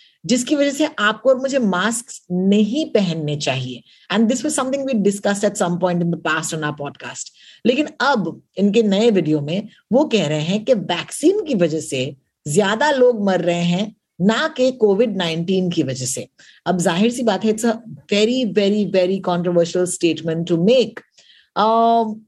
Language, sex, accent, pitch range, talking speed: Hindi, female, native, 170-245 Hz, 155 wpm